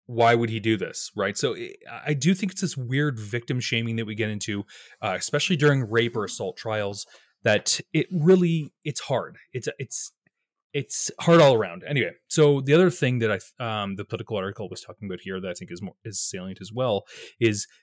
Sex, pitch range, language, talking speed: male, 100-145 Hz, English, 210 wpm